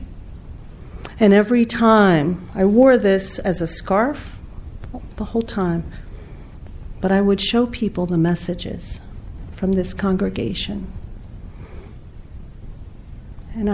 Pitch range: 165-210 Hz